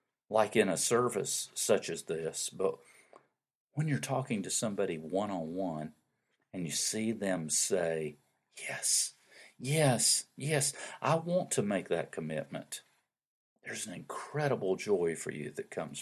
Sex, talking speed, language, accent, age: male, 135 wpm, English, American, 50-69